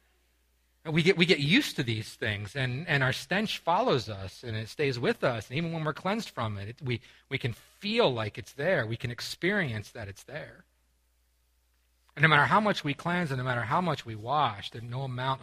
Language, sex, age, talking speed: English, male, 40-59, 220 wpm